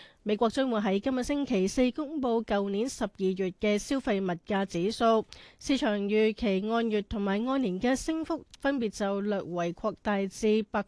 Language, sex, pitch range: Chinese, female, 200-245 Hz